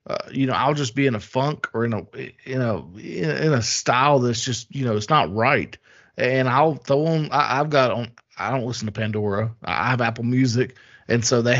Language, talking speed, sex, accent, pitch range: English, 220 wpm, male, American, 125-150 Hz